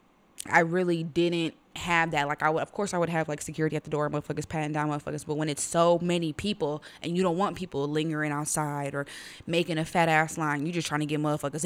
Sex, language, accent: female, English, American